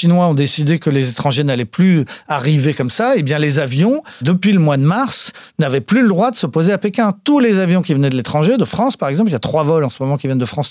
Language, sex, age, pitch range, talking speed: French, male, 40-59, 145-210 Hz, 290 wpm